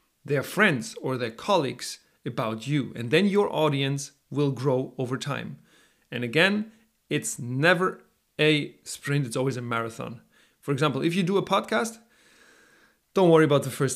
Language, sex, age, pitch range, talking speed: English, male, 40-59, 135-185 Hz, 160 wpm